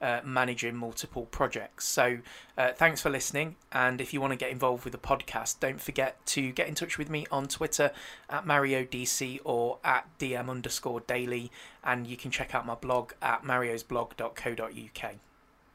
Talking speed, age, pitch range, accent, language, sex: 175 wpm, 20-39, 125-145 Hz, British, English, male